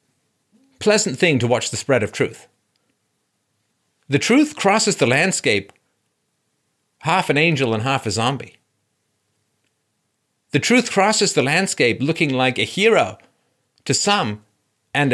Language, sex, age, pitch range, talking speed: English, male, 50-69, 130-215 Hz, 125 wpm